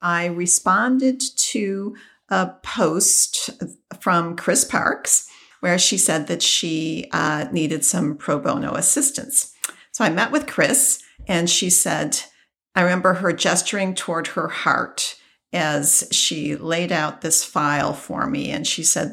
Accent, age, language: American, 50-69, English